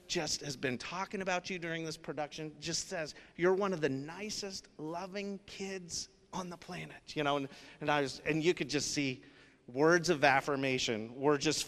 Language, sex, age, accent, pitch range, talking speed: English, male, 30-49, American, 130-170 Hz, 190 wpm